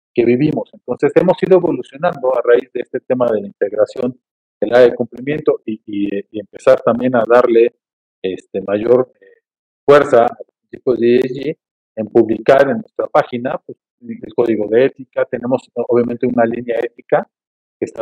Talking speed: 170 wpm